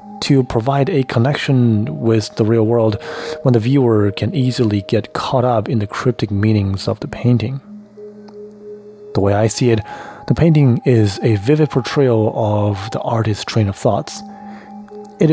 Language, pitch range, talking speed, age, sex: English, 110-155 Hz, 160 wpm, 30-49, male